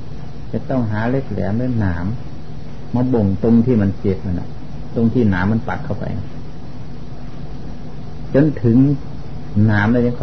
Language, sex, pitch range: Thai, male, 105-140 Hz